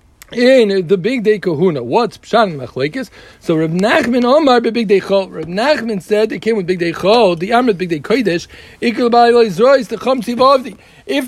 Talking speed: 165 wpm